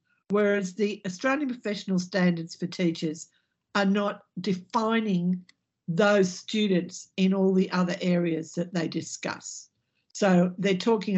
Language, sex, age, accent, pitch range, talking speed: English, female, 60-79, Australian, 175-205 Hz, 125 wpm